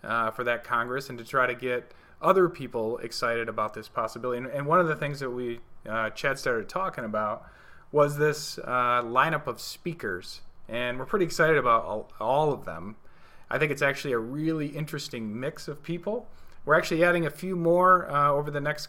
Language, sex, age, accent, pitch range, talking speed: English, male, 30-49, American, 120-155 Hz, 200 wpm